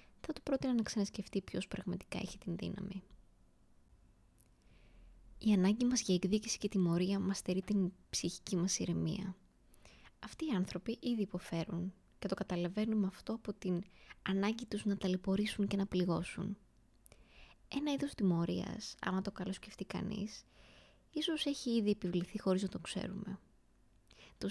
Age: 20-39